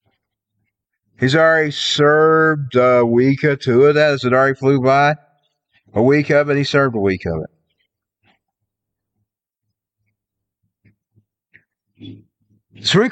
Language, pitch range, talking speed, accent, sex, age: English, 135-200 Hz, 115 wpm, American, male, 50-69